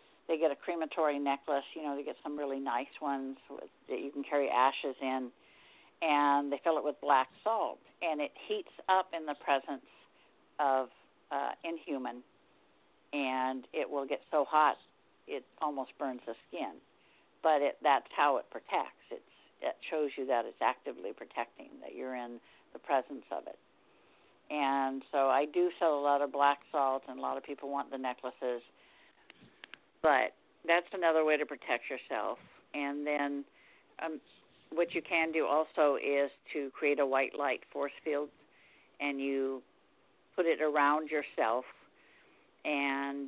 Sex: female